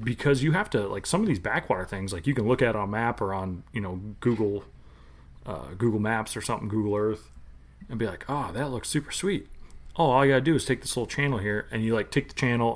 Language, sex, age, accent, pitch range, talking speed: English, male, 30-49, American, 95-125 Hz, 255 wpm